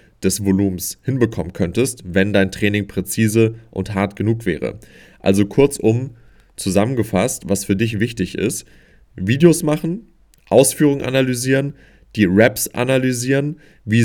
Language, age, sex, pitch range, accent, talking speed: German, 30-49, male, 95-120 Hz, German, 120 wpm